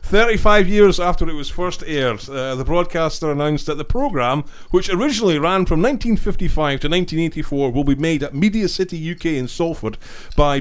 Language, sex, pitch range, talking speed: English, male, 125-185 Hz, 175 wpm